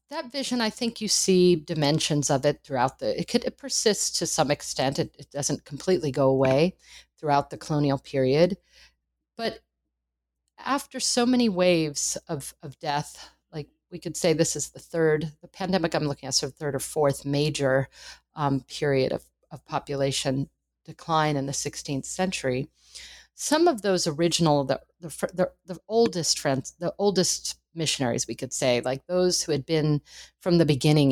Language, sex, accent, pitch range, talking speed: English, female, American, 140-180 Hz, 170 wpm